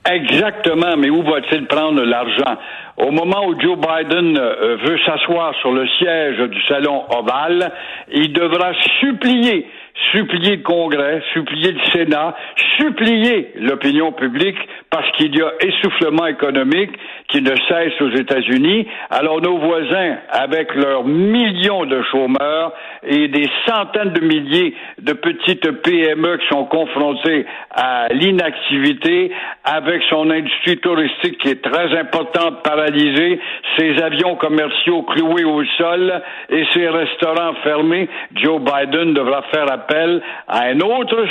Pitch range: 145-210 Hz